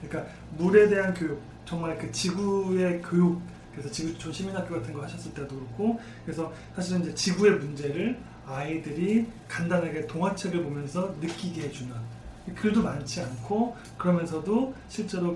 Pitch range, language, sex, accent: 145-195 Hz, Korean, male, native